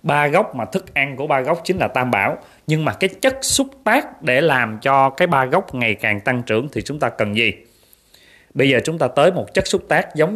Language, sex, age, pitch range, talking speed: Vietnamese, male, 20-39, 115-165 Hz, 250 wpm